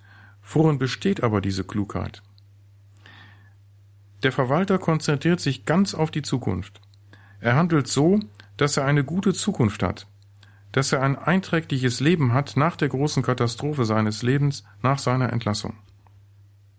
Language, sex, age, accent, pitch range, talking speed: German, male, 50-69, German, 100-150 Hz, 130 wpm